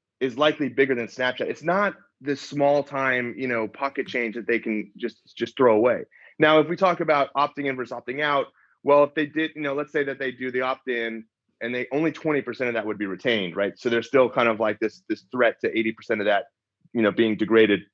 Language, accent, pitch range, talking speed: English, American, 115-150 Hz, 240 wpm